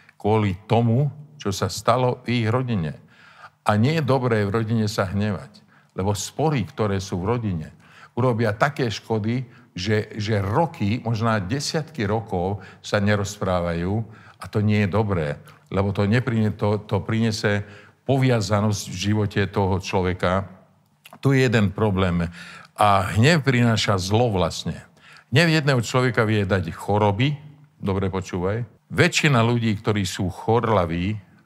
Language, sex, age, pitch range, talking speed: Slovak, male, 50-69, 100-120 Hz, 135 wpm